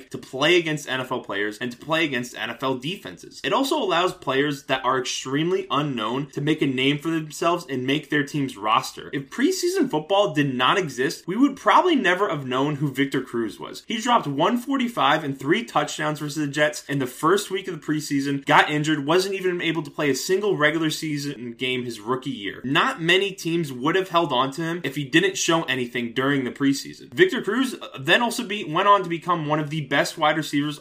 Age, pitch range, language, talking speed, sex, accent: 20-39, 125-160 Hz, English, 210 wpm, male, American